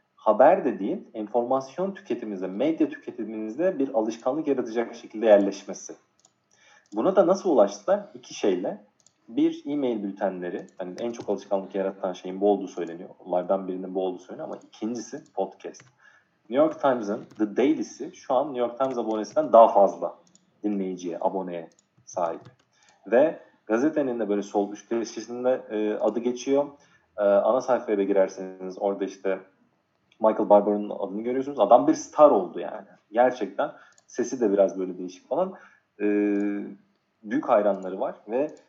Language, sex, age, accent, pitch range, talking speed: Turkish, male, 40-59, native, 100-140 Hz, 140 wpm